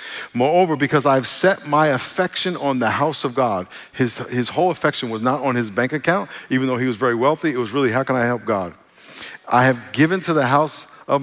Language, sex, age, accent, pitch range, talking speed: English, male, 50-69, American, 125-150 Hz, 225 wpm